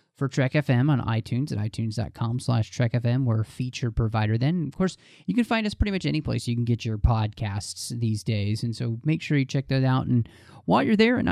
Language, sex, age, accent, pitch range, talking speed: English, male, 30-49, American, 120-155 Hz, 240 wpm